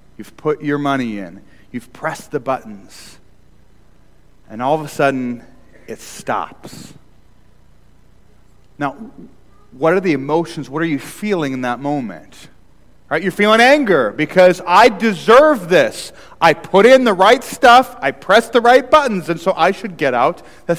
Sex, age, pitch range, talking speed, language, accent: male, 30-49, 125-185 Hz, 155 wpm, English, American